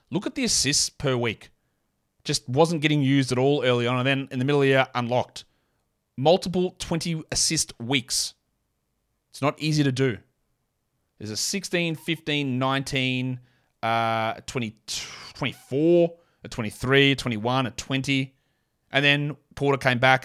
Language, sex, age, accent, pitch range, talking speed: English, male, 30-49, Australian, 120-150 Hz, 150 wpm